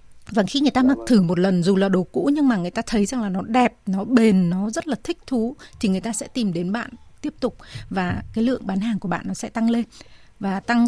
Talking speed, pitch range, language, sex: 275 wpm, 200-255 Hz, Vietnamese, female